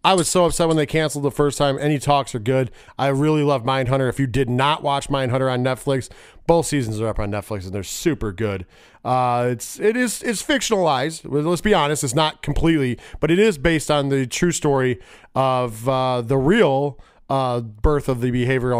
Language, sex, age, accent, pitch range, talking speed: English, male, 40-59, American, 125-150 Hz, 210 wpm